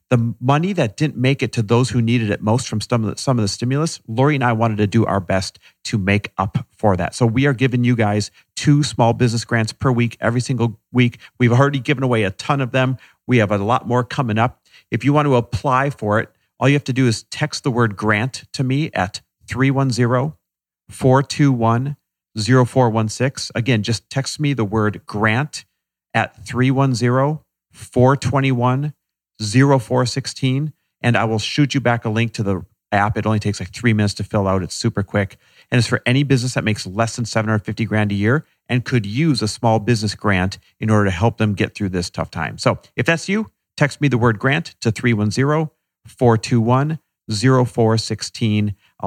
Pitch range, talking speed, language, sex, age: 105-130 Hz, 190 wpm, English, male, 40-59